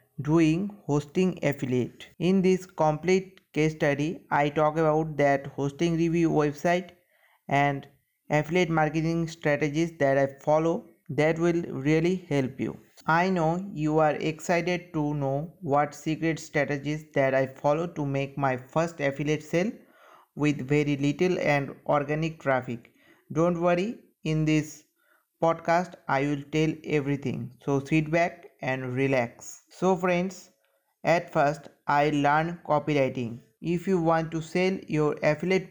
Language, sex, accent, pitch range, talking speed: English, male, Indian, 145-170 Hz, 135 wpm